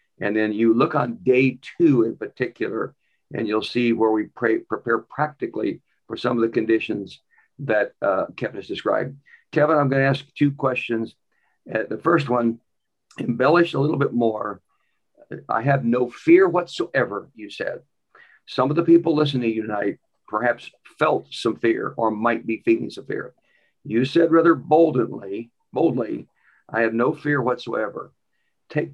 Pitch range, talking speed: 115-140 Hz, 165 wpm